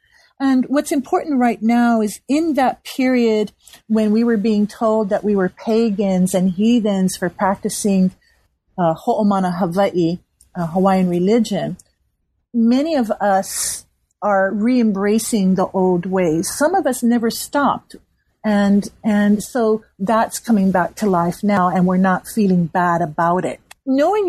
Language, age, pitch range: English, 40-59, 190-230 Hz